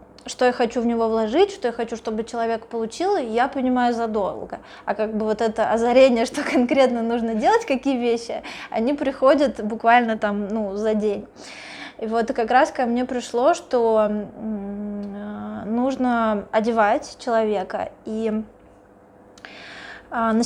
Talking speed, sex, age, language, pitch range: 140 wpm, female, 20-39, Russian, 220-255 Hz